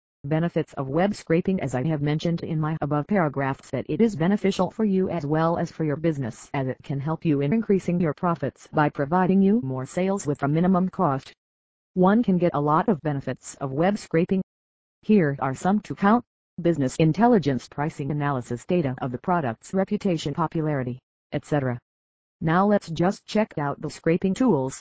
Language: English